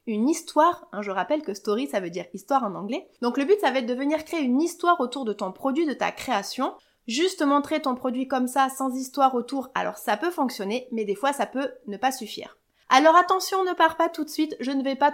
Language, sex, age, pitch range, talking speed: French, female, 30-49, 225-290 Hz, 255 wpm